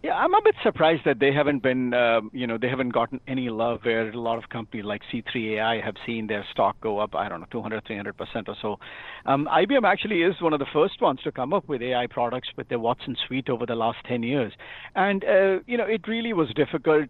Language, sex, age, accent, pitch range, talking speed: English, male, 50-69, Indian, 120-140 Hz, 250 wpm